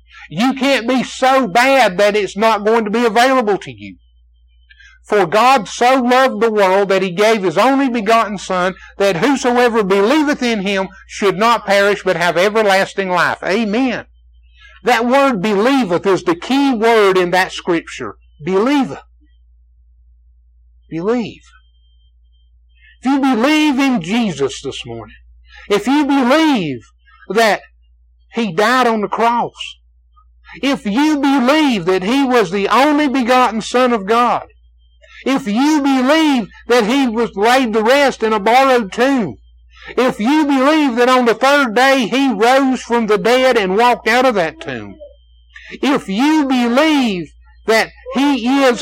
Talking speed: 145 wpm